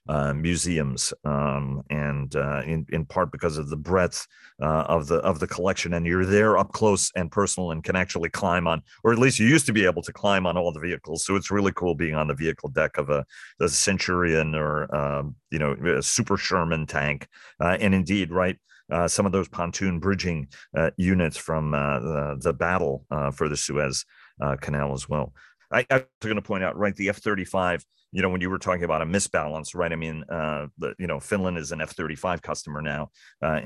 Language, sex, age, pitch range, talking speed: English, male, 40-59, 75-95 Hz, 215 wpm